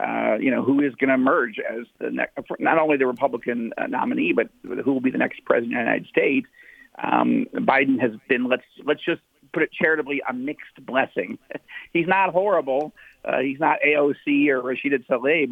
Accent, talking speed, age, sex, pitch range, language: American, 195 wpm, 50-69, male, 135-195 Hz, English